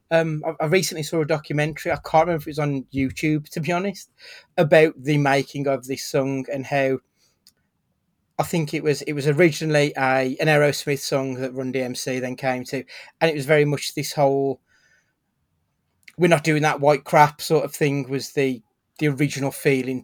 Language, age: English, 30-49